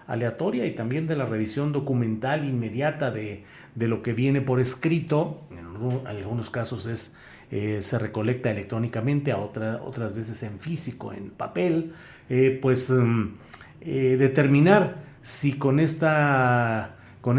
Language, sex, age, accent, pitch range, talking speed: Spanish, male, 40-59, Mexican, 125-160 Hz, 140 wpm